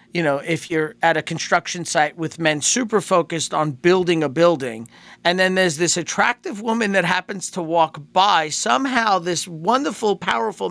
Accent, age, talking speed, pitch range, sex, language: American, 50-69, 175 wpm, 150-195 Hz, male, English